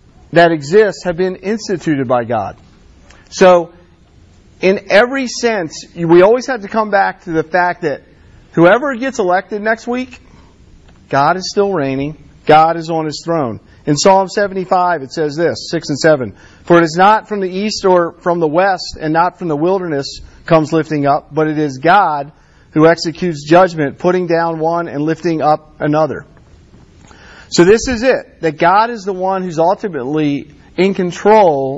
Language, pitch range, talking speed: English, 145-185 Hz, 170 wpm